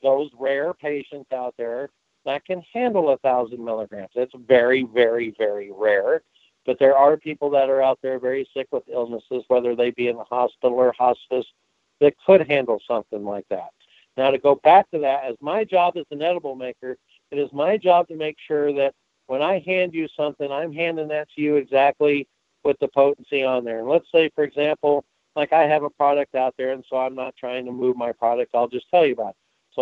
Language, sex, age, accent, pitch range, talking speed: English, male, 60-79, American, 130-165 Hz, 215 wpm